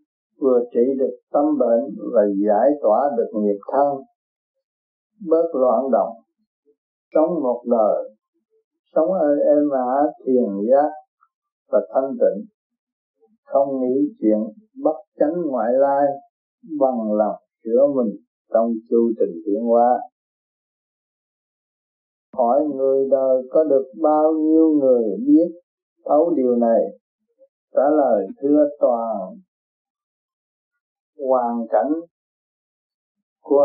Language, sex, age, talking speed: Vietnamese, male, 60-79, 115 wpm